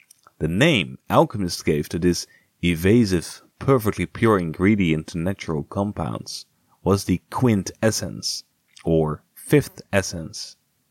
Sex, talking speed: male, 110 wpm